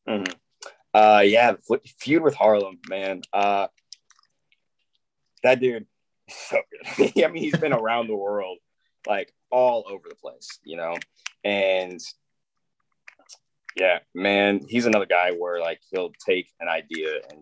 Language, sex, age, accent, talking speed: English, male, 20-39, American, 140 wpm